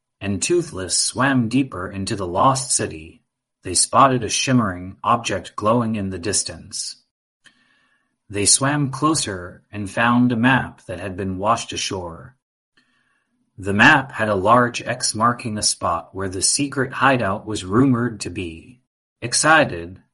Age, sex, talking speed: 30-49, male, 140 wpm